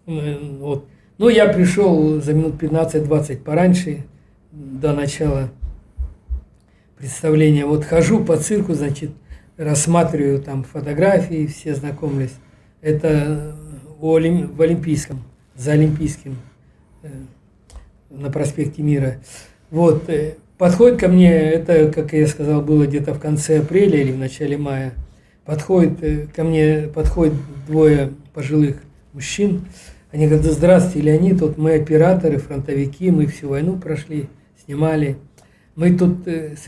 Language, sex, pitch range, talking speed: Russian, male, 140-160 Hz, 110 wpm